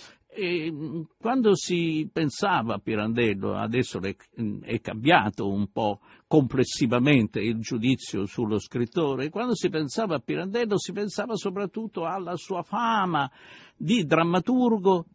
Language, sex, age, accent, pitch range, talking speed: Italian, male, 50-69, native, 120-185 Hz, 110 wpm